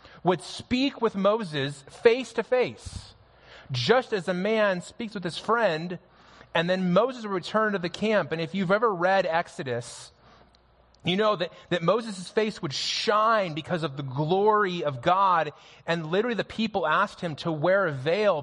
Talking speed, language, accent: 175 wpm, English, American